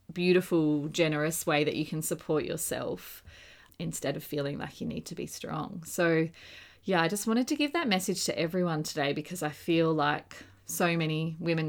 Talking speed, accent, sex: 185 wpm, Australian, female